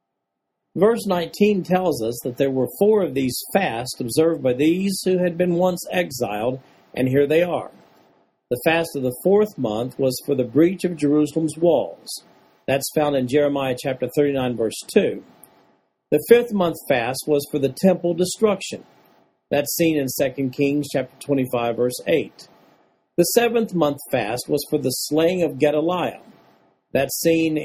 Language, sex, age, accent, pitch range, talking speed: English, male, 50-69, American, 125-175 Hz, 160 wpm